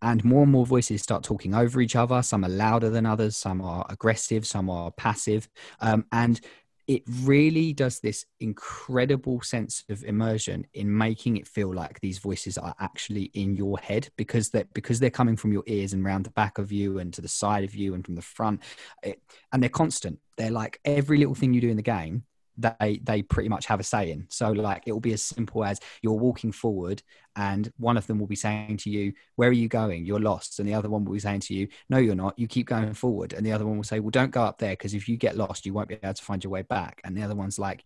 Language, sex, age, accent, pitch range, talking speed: English, male, 20-39, British, 100-120 Hz, 255 wpm